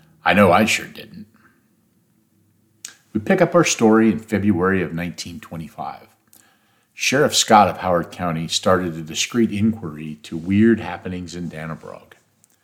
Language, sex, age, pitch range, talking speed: English, male, 50-69, 85-110 Hz, 135 wpm